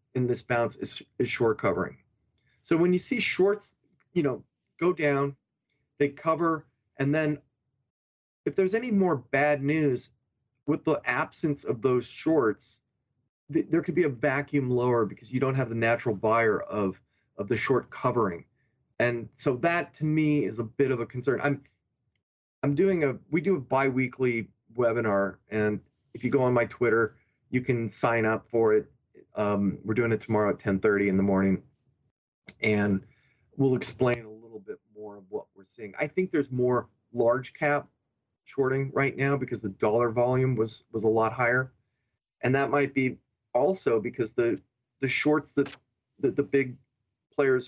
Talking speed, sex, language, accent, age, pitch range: 170 wpm, male, English, American, 30-49, 115-145 Hz